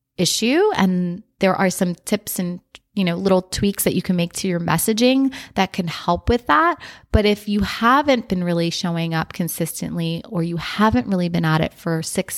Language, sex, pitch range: English, female, 170-205 Hz